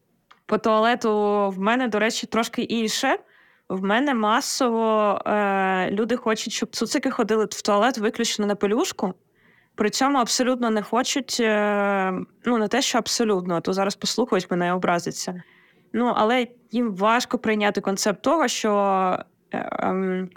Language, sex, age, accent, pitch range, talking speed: Ukrainian, female, 20-39, native, 190-225 Hz, 145 wpm